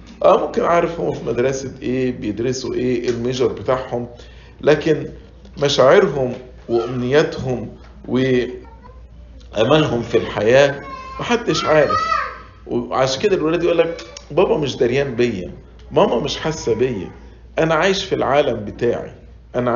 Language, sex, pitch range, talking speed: English, male, 115-170 Hz, 110 wpm